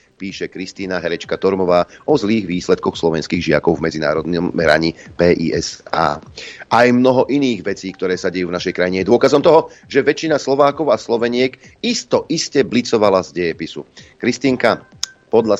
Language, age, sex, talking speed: Slovak, 40-59, male, 145 wpm